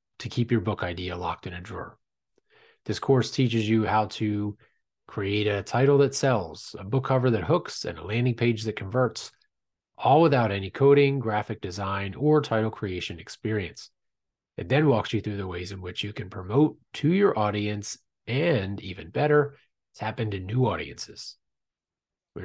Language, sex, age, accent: English, male, 30-49, American